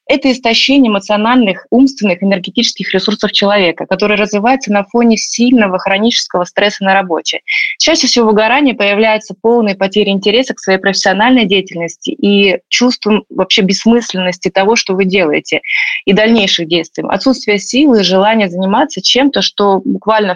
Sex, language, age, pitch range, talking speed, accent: female, Russian, 20-39, 190-235 Hz, 140 wpm, native